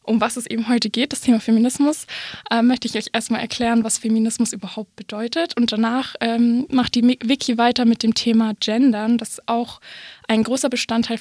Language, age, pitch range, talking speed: German, 20-39, 225-250 Hz, 185 wpm